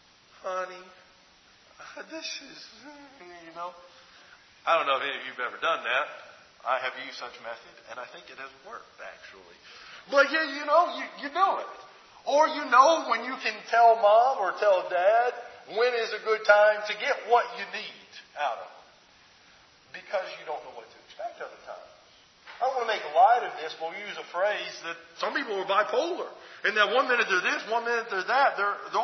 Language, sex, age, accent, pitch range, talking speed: English, male, 40-59, American, 205-290 Hz, 200 wpm